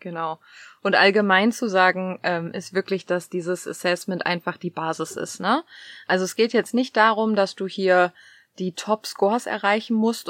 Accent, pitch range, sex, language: German, 175-210 Hz, female, German